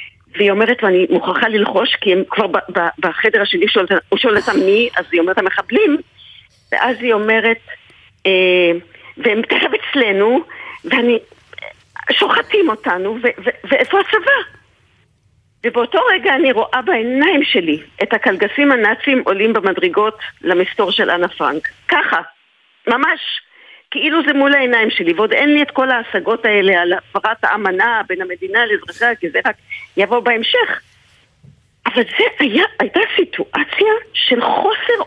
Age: 50-69